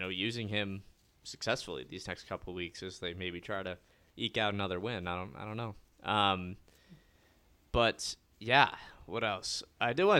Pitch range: 90-115 Hz